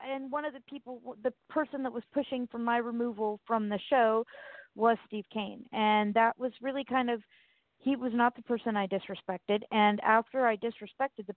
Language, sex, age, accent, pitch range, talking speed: English, female, 40-59, American, 195-240 Hz, 195 wpm